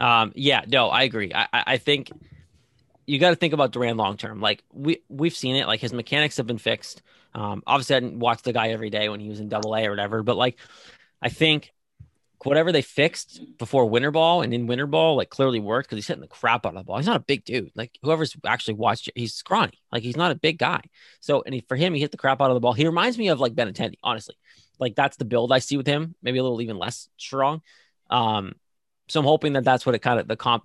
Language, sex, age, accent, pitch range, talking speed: English, male, 20-39, American, 115-140 Hz, 265 wpm